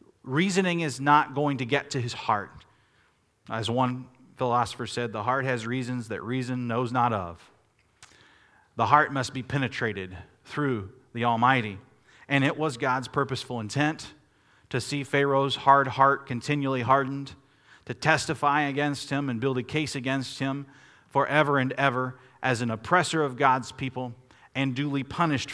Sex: male